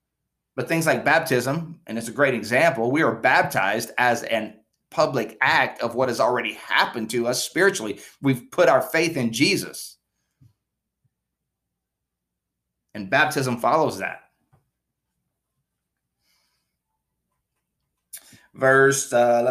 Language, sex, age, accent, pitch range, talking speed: English, male, 30-49, American, 115-175 Hz, 110 wpm